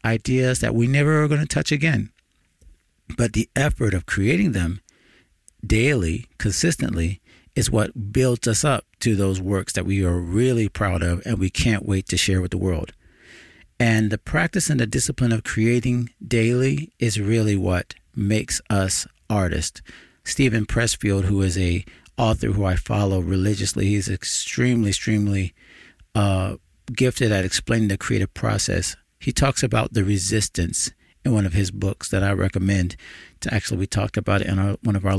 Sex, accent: male, American